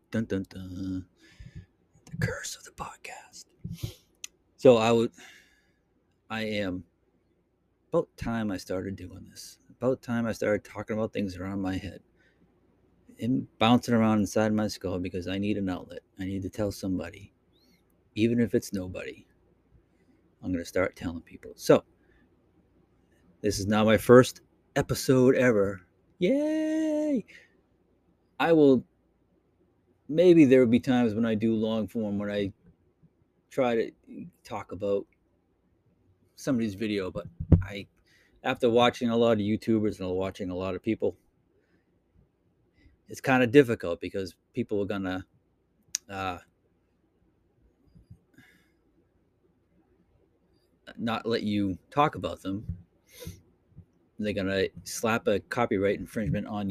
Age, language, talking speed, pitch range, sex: 30-49, English, 125 wpm, 95-115 Hz, male